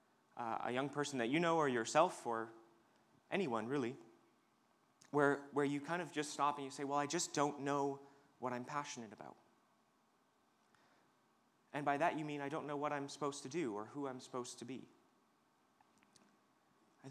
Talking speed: 180 wpm